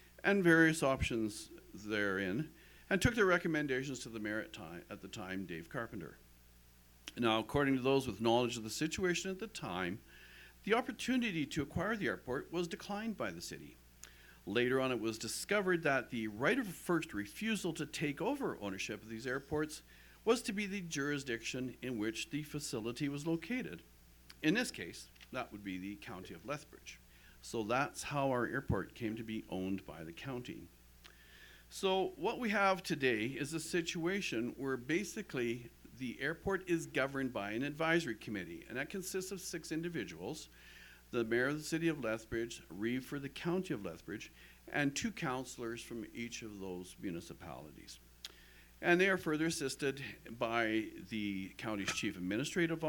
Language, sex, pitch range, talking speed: English, male, 105-165 Hz, 165 wpm